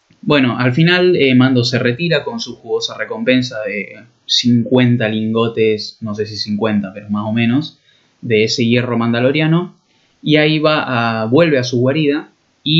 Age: 10-29